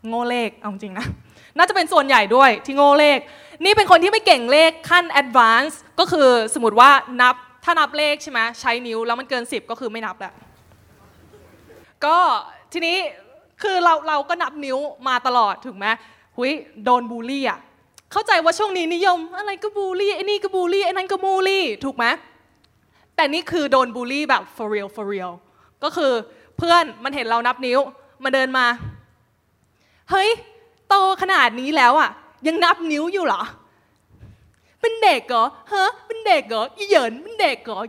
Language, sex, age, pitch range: Thai, female, 20-39, 235-350 Hz